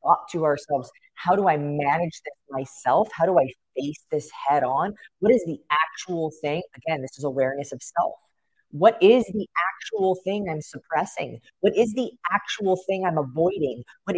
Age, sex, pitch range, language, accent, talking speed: 30-49, female, 150-200 Hz, English, American, 180 wpm